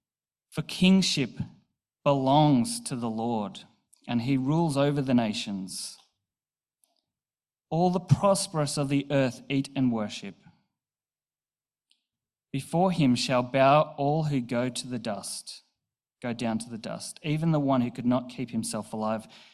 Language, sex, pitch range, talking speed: English, male, 125-165 Hz, 140 wpm